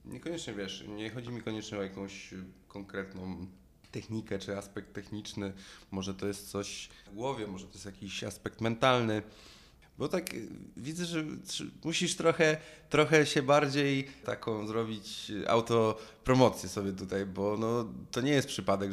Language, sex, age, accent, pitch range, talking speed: Polish, male, 20-39, native, 100-115 Hz, 145 wpm